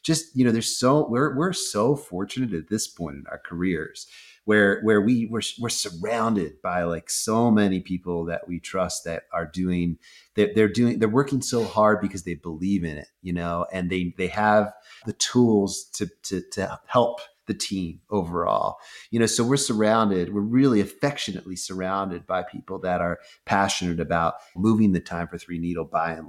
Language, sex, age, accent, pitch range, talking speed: English, male, 30-49, American, 90-115 Hz, 185 wpm